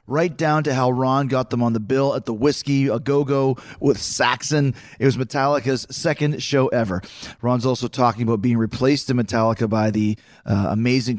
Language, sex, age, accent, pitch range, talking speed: English, male, 30-49, American, 120-145 Hz, 190 wpm